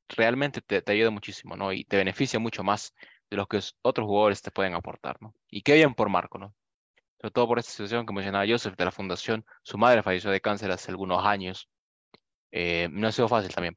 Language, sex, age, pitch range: English, male, 20-39, 95-115 Hz